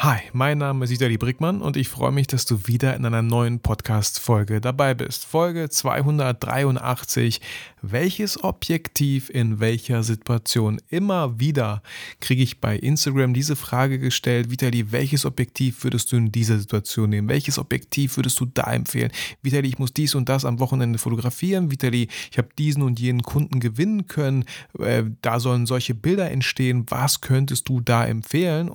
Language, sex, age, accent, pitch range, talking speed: German, male, 30-49, German, 115-140 Hz, 165 wpm